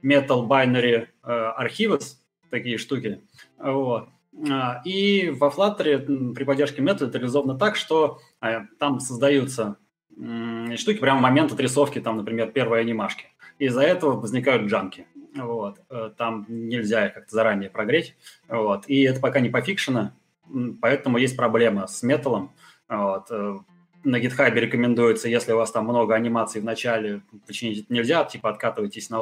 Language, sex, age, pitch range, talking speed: Russian, male, 20-39, 110-140 Hz, 145 wpm